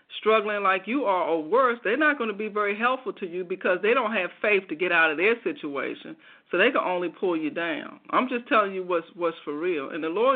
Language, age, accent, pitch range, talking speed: English, 50-69, American, 175-245 Hz, 255 wpm